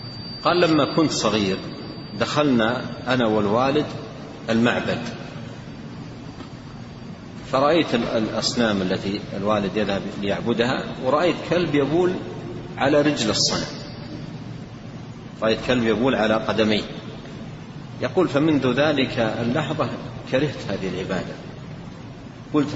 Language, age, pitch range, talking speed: Arabic, 40-59, 110-130 Hz, 85 wpm